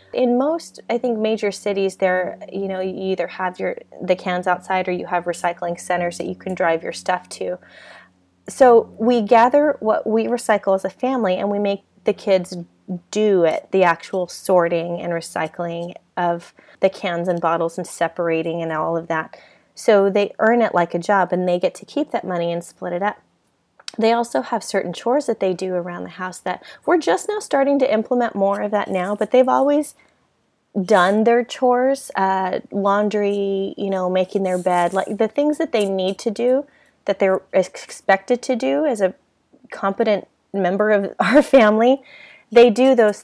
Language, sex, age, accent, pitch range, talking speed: English, female, 30-49, American, 180-225 Hz, 190 wpm